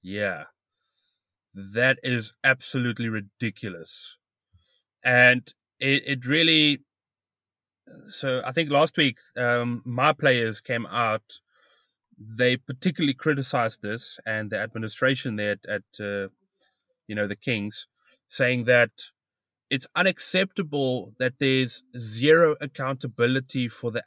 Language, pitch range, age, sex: English, 120-150 Hz, 30-49, male